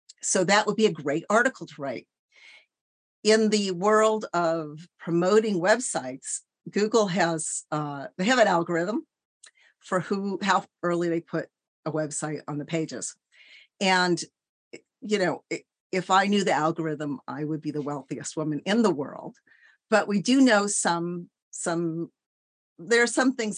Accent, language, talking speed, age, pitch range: American, English, 155 wpm, 50-69, 160-215 Hz